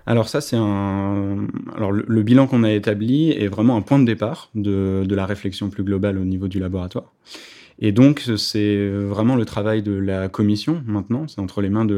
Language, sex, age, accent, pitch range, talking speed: French, male, 20-39, French, 100-110 Hz, 205 wpm